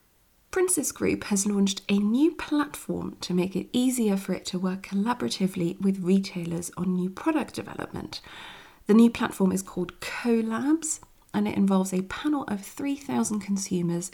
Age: 40-59